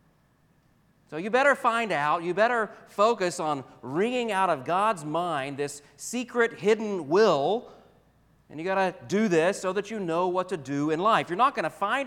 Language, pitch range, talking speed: English, 140-170 Hz, 190 wpm